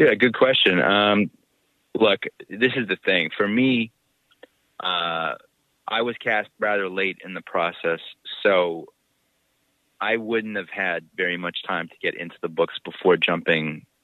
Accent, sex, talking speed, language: American, male, 150 wpm, English